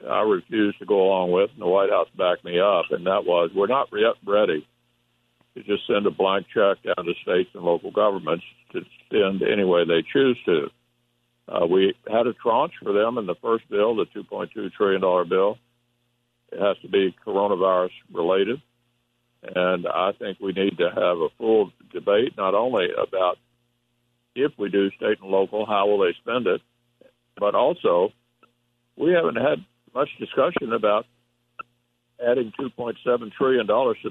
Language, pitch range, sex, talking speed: English, 85-120 Hz, male, 170 wpm